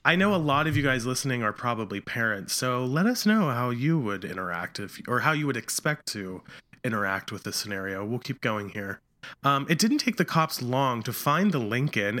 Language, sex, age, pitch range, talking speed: English, male, 30-49, 125-175 Hz, 225 wpm